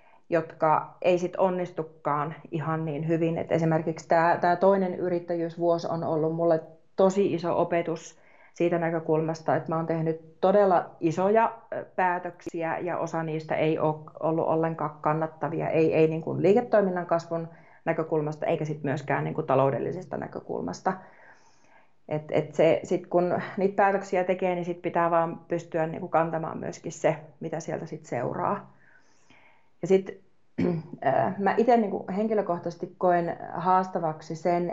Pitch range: 160-185 Hz